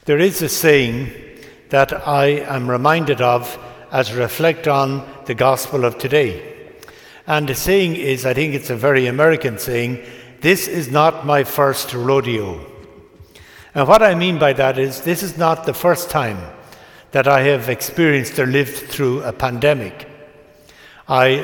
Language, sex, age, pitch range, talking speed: English, male, 60-79, 130-150 Hz, 160 wpm